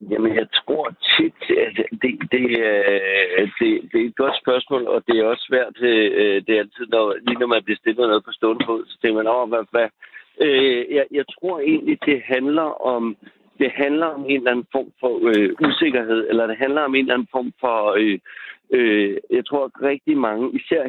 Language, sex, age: Danish, male, 60-79